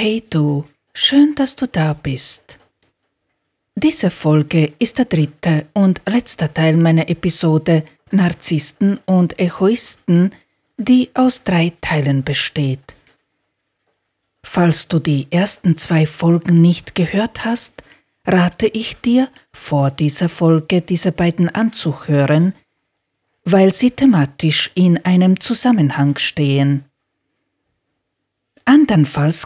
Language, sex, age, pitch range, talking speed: German, female, 40-59, 150-195 Hz, 105 wpm